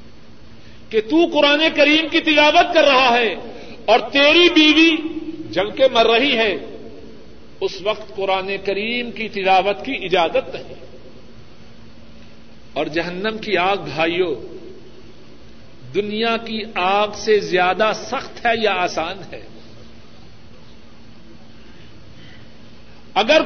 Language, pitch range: Urdu, 195-305 Hz